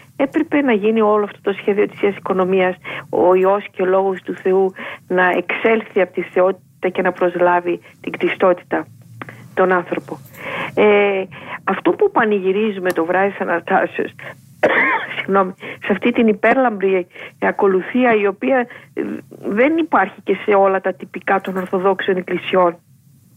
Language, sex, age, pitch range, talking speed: Greek, female, 50-69, 185-225 Hz, 135 wpm